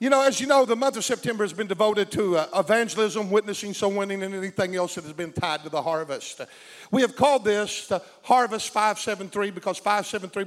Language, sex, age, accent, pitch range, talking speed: English, male, 50-69, American, 190-225 Hz, 210 wpm